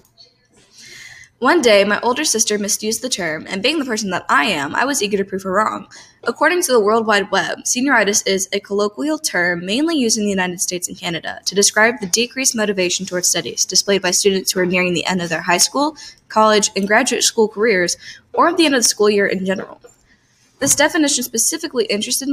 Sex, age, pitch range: female, 10-29, 185-235 Hz